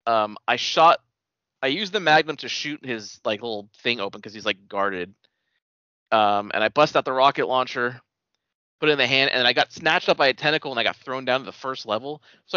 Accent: American